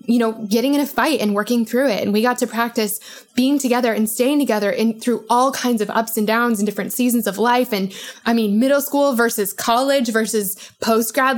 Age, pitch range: 20-39, 215-255 Hz